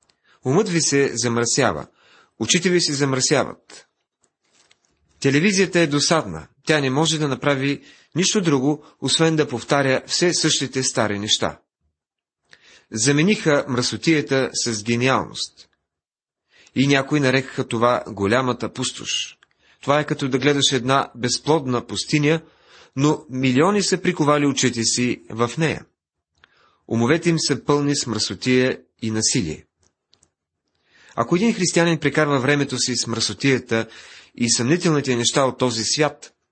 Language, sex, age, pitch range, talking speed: Bulgarian, male, 30-49, 120-150 Hz, 120 wpm